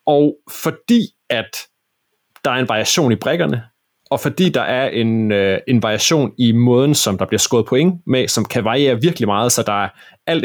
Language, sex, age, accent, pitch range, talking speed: Danish, male, 30-49, native, 115-145 Hz, 195 wpm